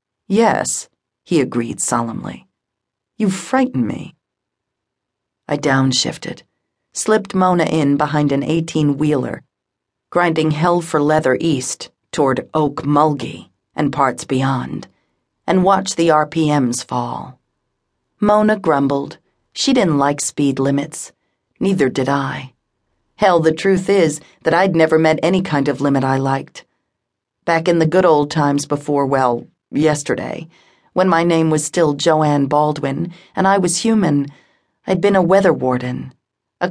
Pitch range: 140-180 Hz